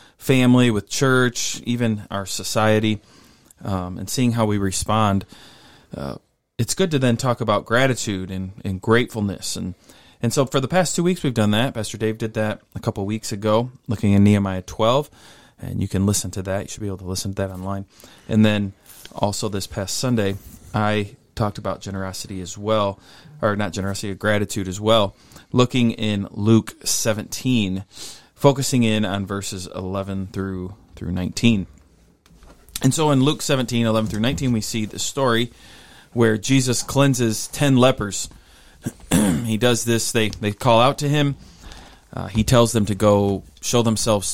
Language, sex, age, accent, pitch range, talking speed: English, male, 20-39, American, 95-115 Hz, 170 wpm